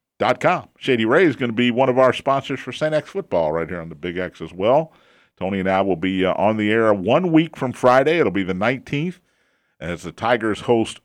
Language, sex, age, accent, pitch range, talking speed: English, male, 50-69, American, 105-145 Hz, 235 wpm